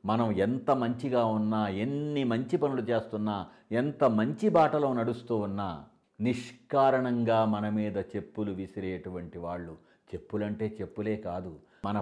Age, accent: 60-79, native